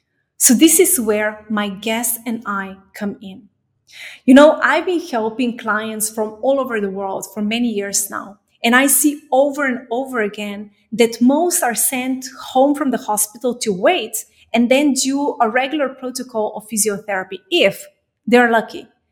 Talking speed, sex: 165 wpm, female